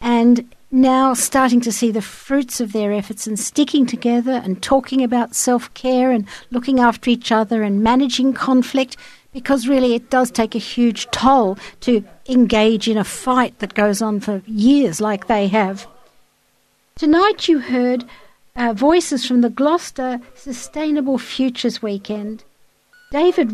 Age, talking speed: 60-79, 150 wpm